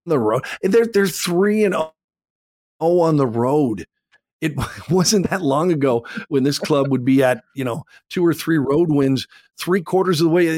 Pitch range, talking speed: 125-160 Hz, 185 wpm